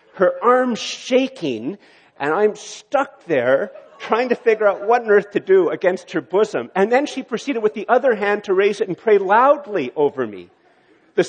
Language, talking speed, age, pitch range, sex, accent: English, 190 wpm, 50-69, 150-235 Hz, male, American